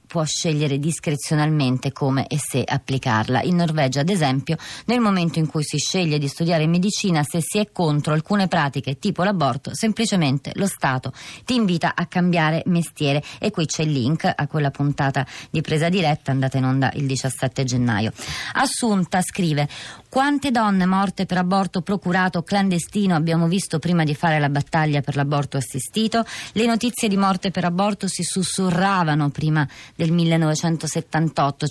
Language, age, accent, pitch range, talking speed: Italian, 30-49, native, 145-185 Hz, 155 wpm